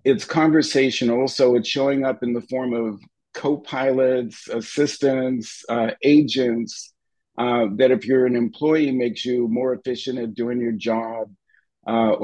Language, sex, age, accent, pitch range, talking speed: English, male, 50-69, American, 115-145 Hz, 140 wpm